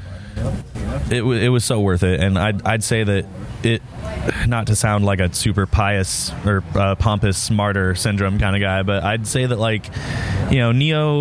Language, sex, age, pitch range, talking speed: English, male, 20-39, 95-110 Hz, 185 wpm